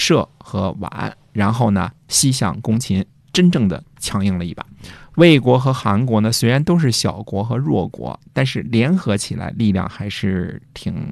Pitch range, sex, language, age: 100-135 Hz, male, Chinese, 50-69